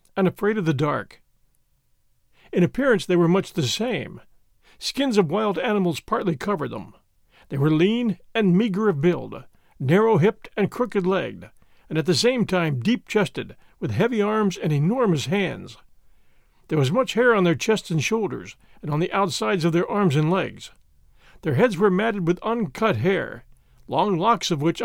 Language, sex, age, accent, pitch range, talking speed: English, male, 50-69, American, 160-205 Hz, 170 wpm